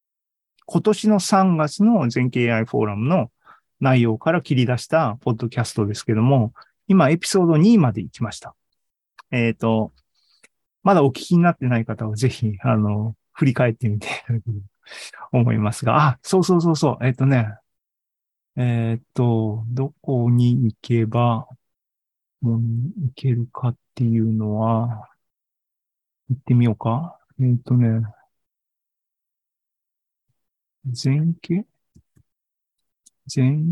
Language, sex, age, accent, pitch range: Japanese, male, 40-59, native, 115-145 Hz